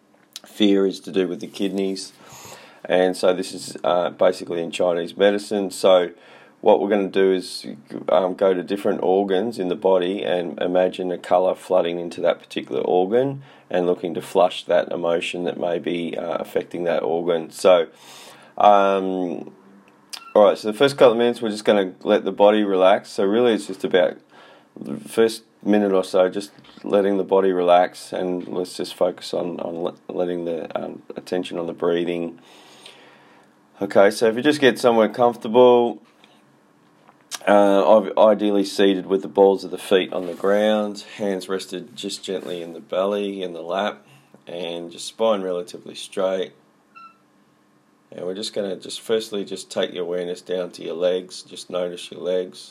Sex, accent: male, Australian